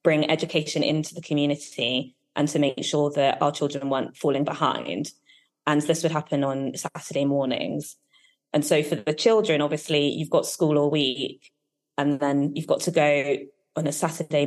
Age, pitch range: 20-39, 140-160 Hz